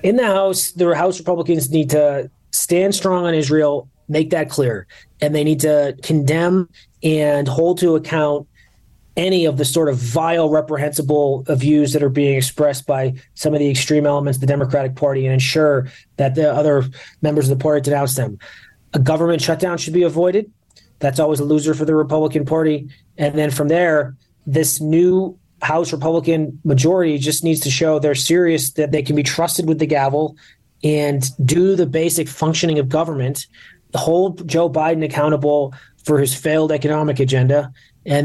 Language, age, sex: English, 30-49, male